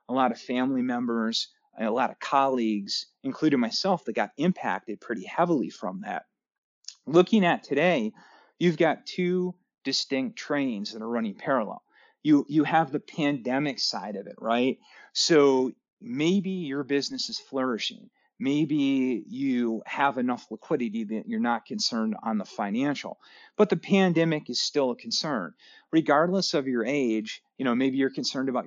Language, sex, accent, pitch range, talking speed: English, male, American, 125-195 Hz, 155 wpm